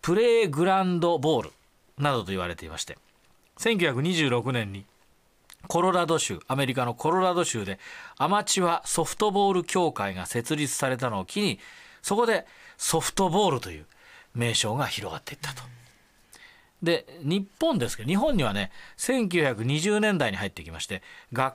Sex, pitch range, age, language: male, 120-185 Hz, 40-59, Japanese